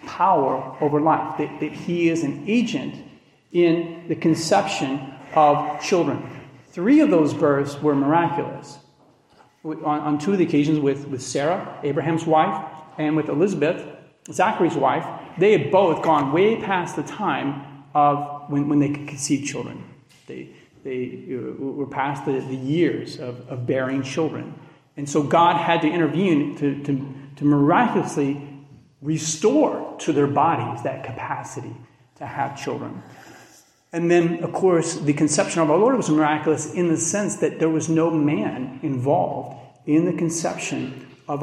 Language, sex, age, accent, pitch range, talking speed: English, male, 40-59, American, 135-165 Hz, 150 wpm